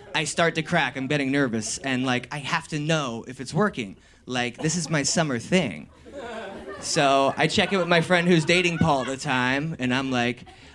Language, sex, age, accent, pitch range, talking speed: English, male, 20-39, American, 135-200 Hz, 210 wpm